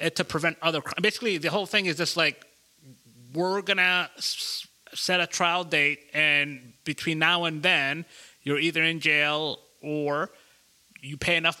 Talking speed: 150 wpm